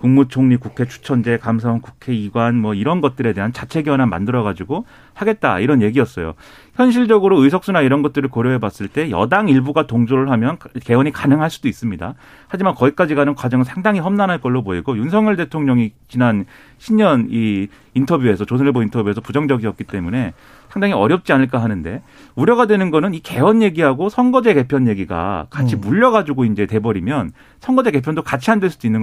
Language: Korean